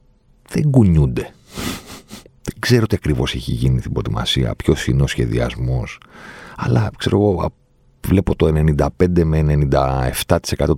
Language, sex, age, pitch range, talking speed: Greek, male, 40-59, 70-105 Hz, 120 wpm